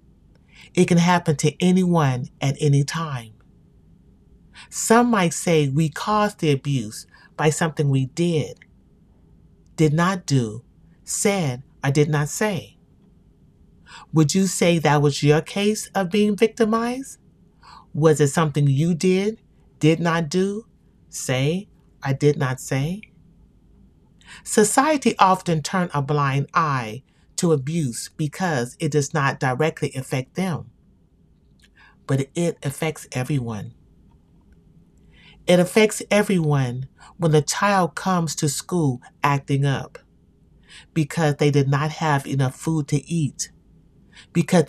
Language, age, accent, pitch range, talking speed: English, 30-49, American, 140-180 Hz, 120 wpm